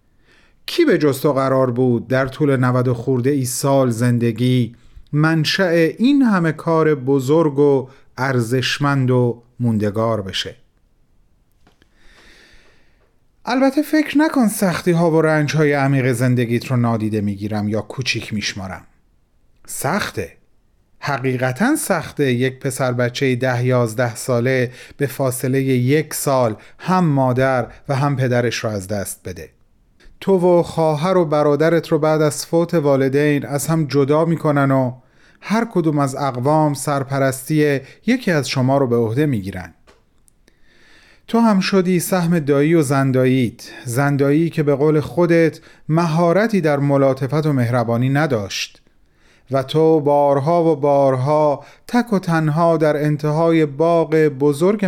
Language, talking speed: Persian, 130 wpm